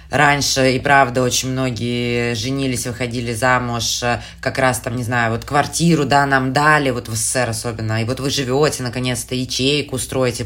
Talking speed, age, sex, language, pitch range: 165 wpm, 20-39, female, Russian, 120-145 Hz